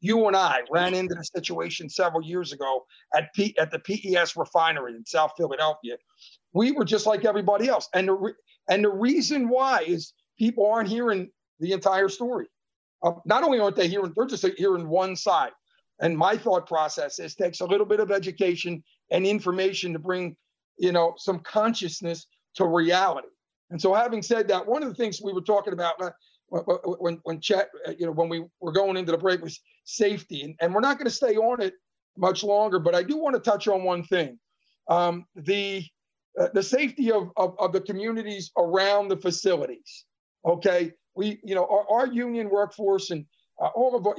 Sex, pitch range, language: male, 175-220 Hz, English